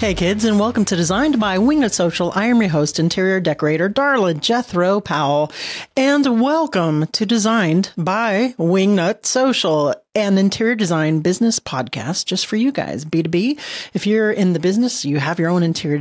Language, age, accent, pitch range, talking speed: English, 40-59, American, 165-220 Hz, 165 wpm